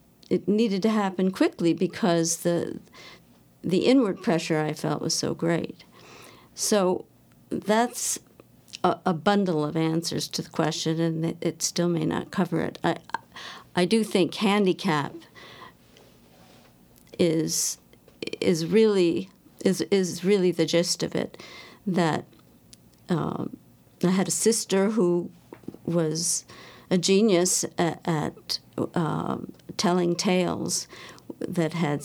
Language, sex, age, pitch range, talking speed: English, female, 50-69, 160-190 Hz, 120 wpm